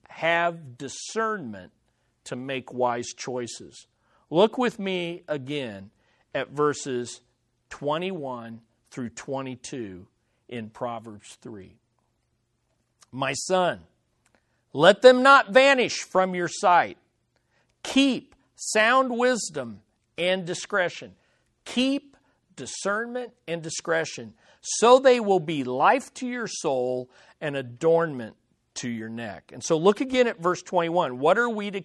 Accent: American